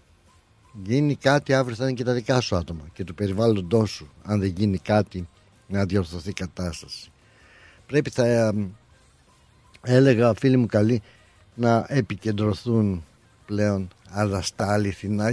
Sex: male